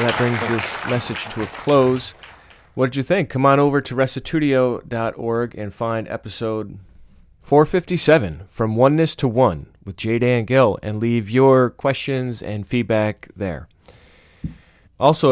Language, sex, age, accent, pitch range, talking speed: English, male, 30-49, American, 100-125 Hz, 145 wpm